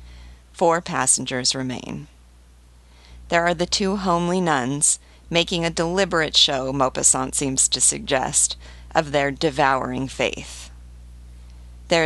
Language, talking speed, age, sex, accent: English, 110 wpm, 40-59, female, American